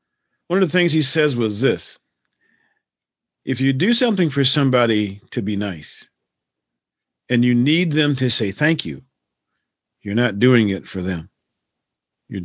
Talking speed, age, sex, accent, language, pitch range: 155 wpm, 50-69, male, American, English, 110-145 Hz